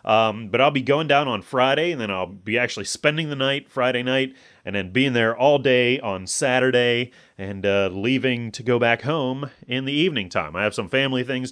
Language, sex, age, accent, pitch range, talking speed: English, male, 30-49, American, 110-150 Hz, 220 wpm